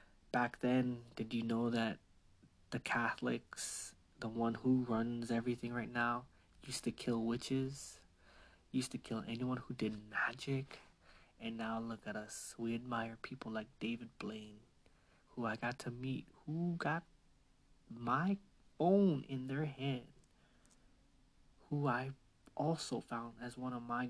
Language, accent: English, American